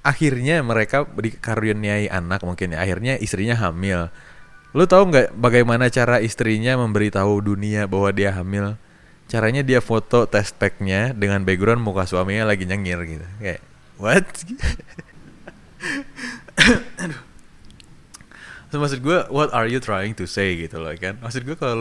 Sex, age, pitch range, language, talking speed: male, 20-39, 95-130 Hz, Indonesian, 135 wpm